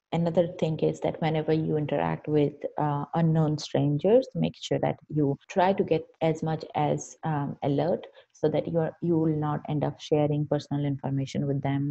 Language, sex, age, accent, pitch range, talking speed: English, female, 30-49, Indian, 145-165 Hz, 180 wpm